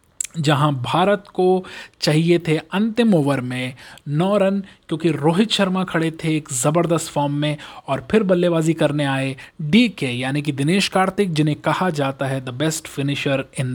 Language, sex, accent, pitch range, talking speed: Hindi, male, native, 145-190 Hz, 165 wpm